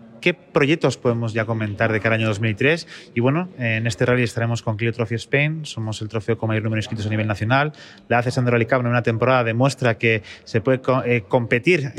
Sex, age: male, 30-49